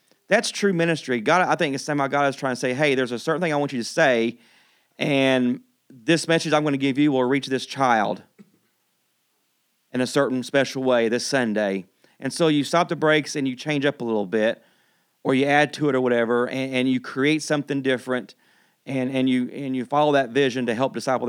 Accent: American